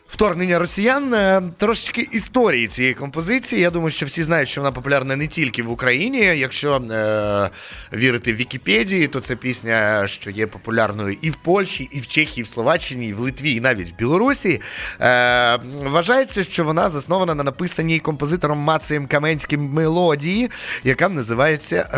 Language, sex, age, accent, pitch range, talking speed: Ukrainian, male, 20-39, native, 125-175 Hz, 160 wpm